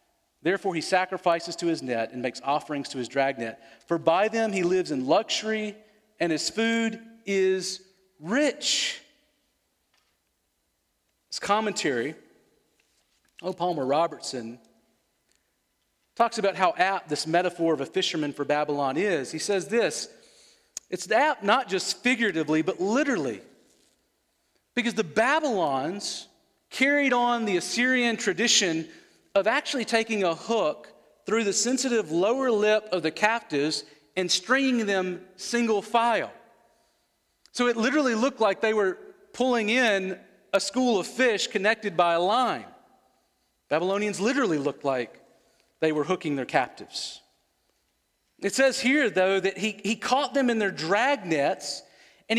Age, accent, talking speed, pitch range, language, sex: 40-59, American, 135 wpm, 175-240 Hz, English, male